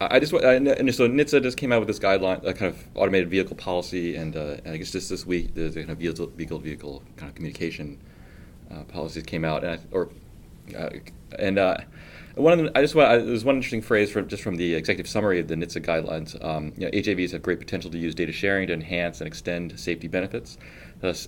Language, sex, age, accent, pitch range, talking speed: English, male, 30-49, American, 80-95 Hz, 230 wpm